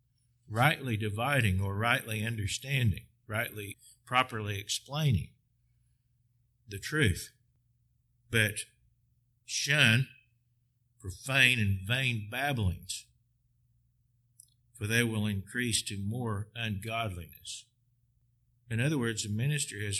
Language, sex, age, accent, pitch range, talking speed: English, male, 50-69, American, 105-120 Hz, 85 wpm